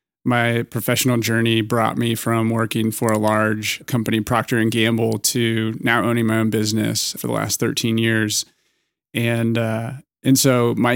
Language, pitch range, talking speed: English, 110-120 Hz, 165 wpm